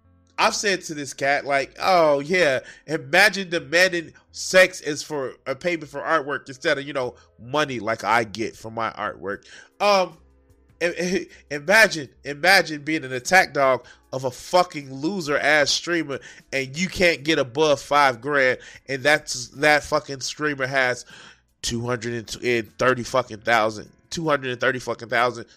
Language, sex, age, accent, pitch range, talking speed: English, male, 20-39, American, 130-185 Hz, 150 wpm